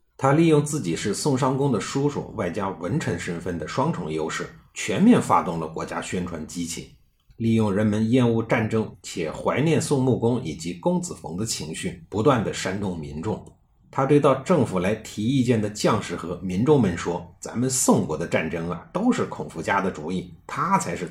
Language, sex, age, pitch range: Chinese, male, 50-69, 90-130 Hz